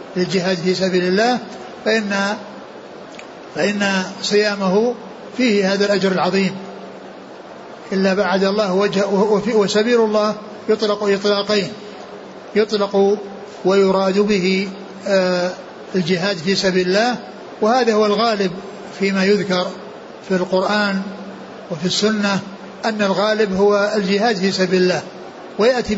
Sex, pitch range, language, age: male, 195-215 Hz, Arabic, 60-79